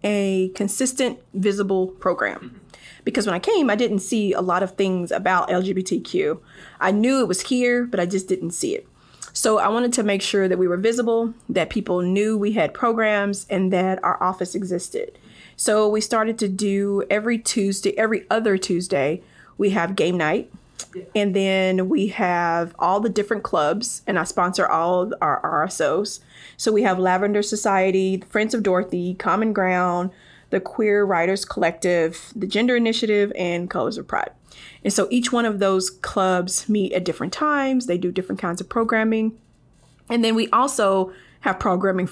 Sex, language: female, English